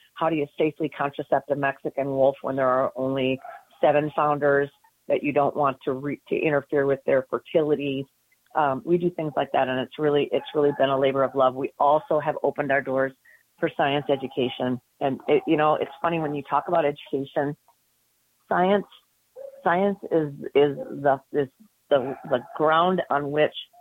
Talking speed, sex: 180 wpm, female